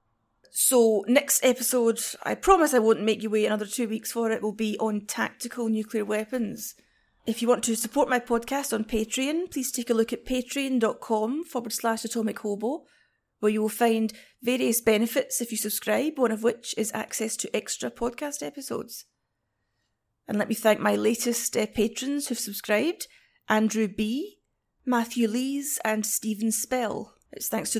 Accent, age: British, 30-49